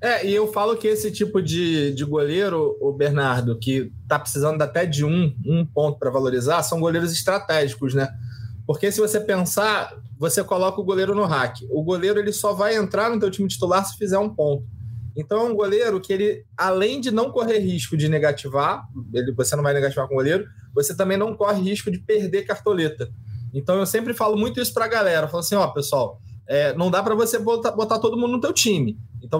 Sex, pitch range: male, 145-210 Hz